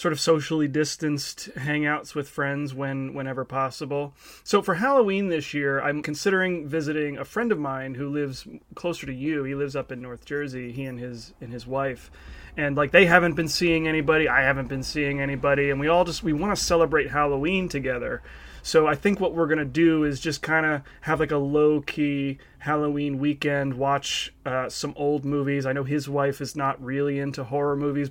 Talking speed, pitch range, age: 200 wpm, 140-170 Hz, 30-49